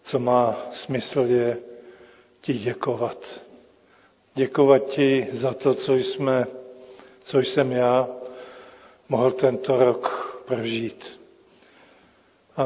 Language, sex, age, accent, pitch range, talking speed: Czech, male, 50-69, native, 125-135 Hz, 90 wpm